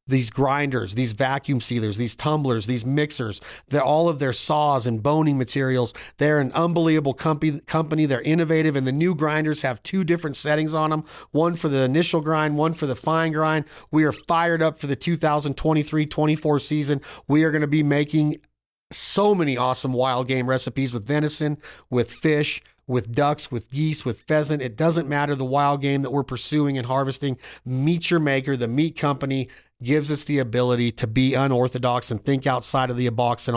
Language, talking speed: English, 185 wpm